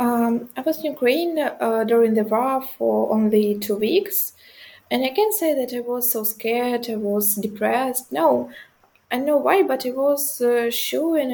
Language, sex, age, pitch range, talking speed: English, female, 20-39, 215-255 Hz, 190 wpm